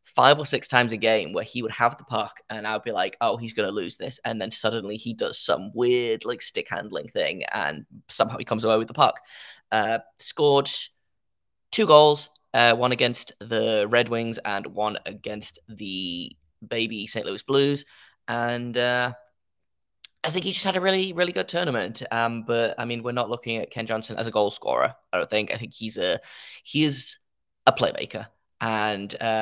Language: English